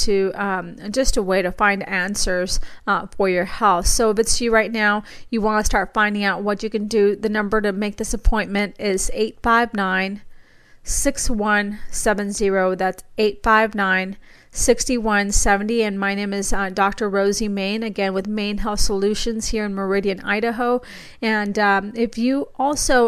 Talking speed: 160 wpm